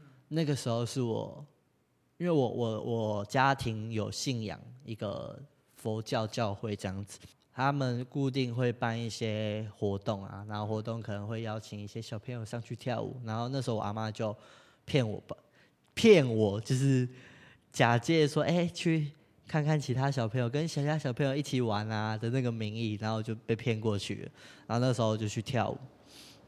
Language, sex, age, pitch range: Chinese, male, 20-39, 110-135 Hz